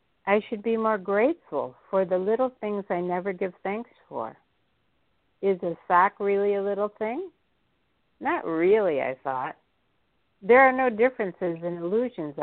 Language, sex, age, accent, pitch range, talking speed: English, female, 60-79, American, 175-220 Hz, 150 wpm